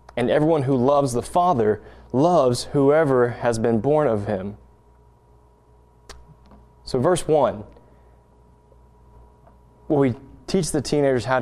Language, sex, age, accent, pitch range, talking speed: English, male, 20-39, American, 95-145 Hz, 115 wpm